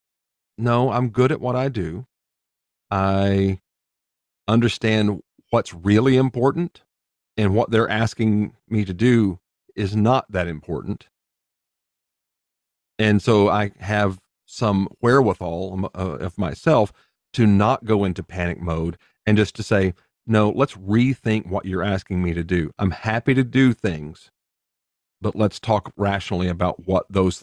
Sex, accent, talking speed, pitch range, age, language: male, American, 135 wpm, 90-110 Hz, 40-59, English